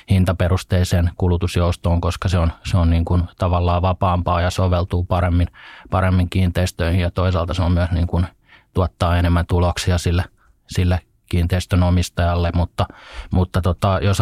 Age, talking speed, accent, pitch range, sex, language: 20-39, 145 wpm, native, 90-100 Hz, male, Finnish